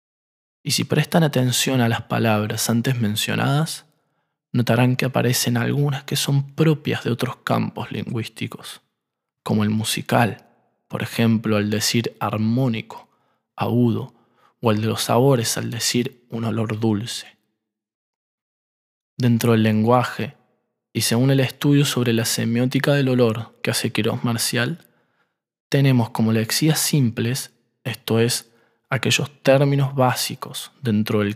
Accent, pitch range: Argentinian, 110-130 Hz